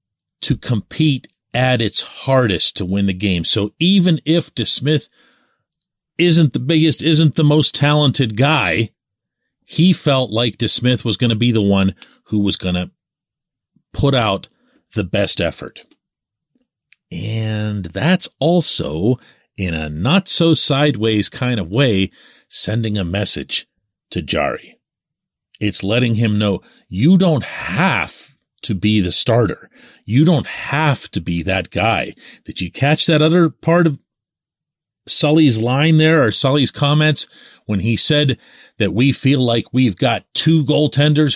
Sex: male